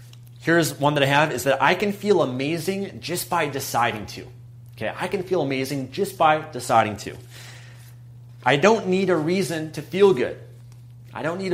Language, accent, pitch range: English, American, 120-140 Hz